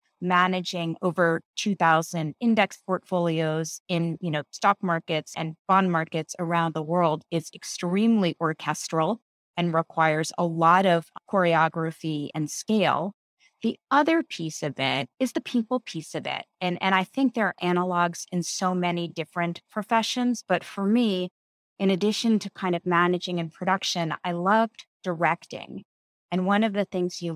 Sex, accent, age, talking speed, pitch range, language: female, American, 30-49, 155 wpm, 165-190 Hz, English